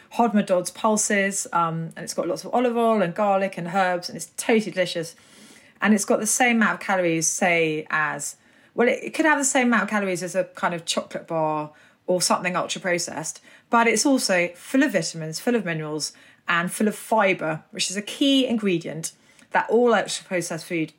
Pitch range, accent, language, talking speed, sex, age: 175-245 Hz, British, English, 200 wpm, female, 30-49